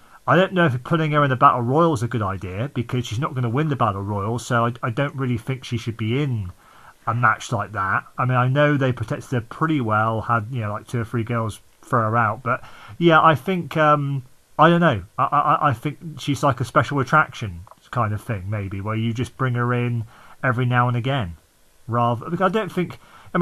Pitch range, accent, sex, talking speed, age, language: 115-150 Hz, British, male, 240 wpm, 40-59, English